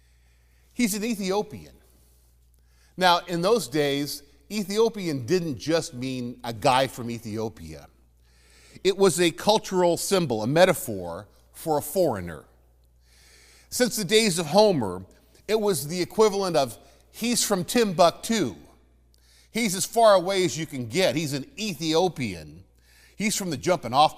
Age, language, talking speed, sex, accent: 50-69, English, 135 wpm, male, American